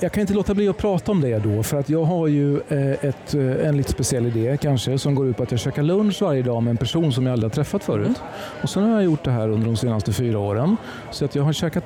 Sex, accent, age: male, native, 40-59